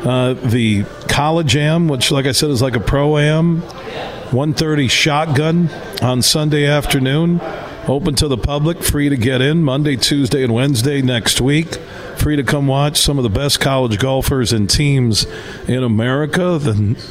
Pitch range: 120-150 Hz